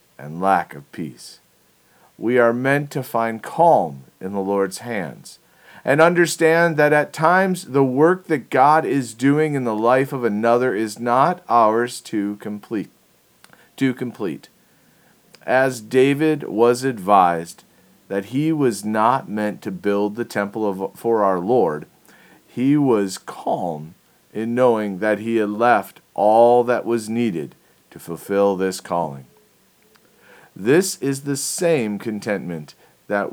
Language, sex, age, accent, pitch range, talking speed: English, male, 40-59, American, 100-130 Hz, 140 wpm